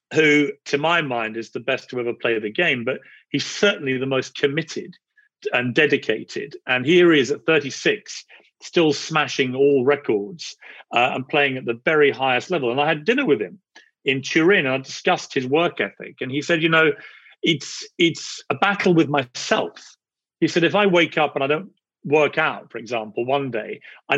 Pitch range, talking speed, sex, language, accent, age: 130-165 Hz, 195 wpm, male, English, British, 40-59